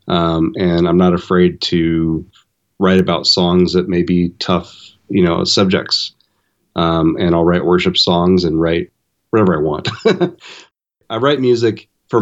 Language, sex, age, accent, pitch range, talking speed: English, male, 30-49, American, 85-100 Hz, 150 wpm